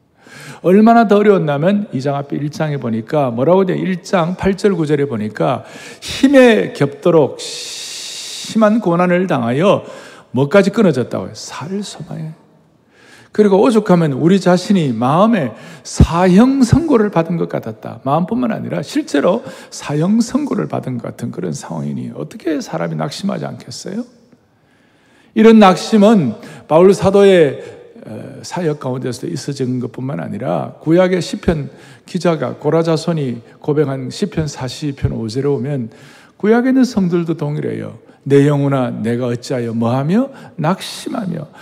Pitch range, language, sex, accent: 140-210 Hz, Korean, male, native